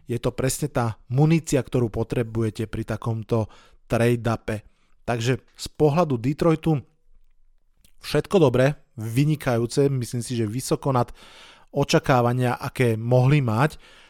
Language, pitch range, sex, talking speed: Slovak, 115-140 Hz, male, 110 wpm